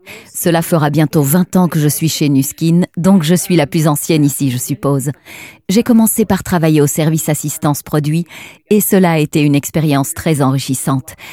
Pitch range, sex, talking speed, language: 145-185 Hz, female, 180 wpm, French